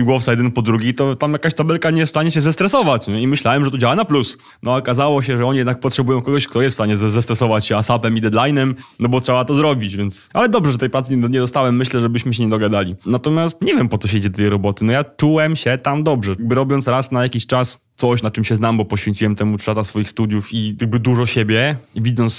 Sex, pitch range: male, 110-135 Hz